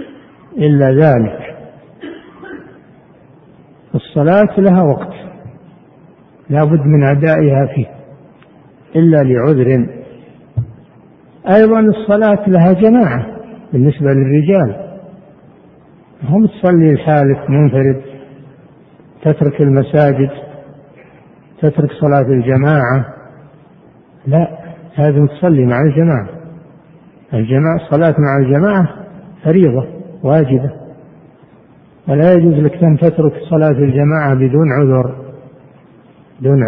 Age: 60-79